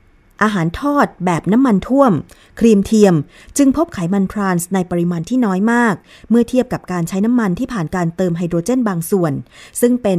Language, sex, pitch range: Thai, female, 175-225 Hz